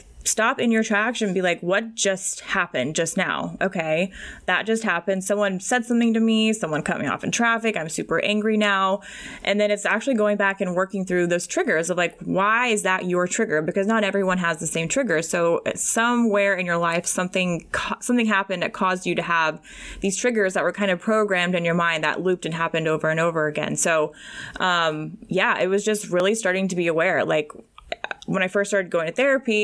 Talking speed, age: 215 wpm, 20-39